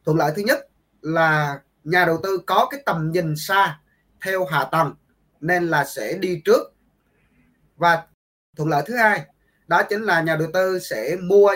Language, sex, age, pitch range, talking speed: Vietnamese, male, 20-39, 150-195 Hz, 175 wpm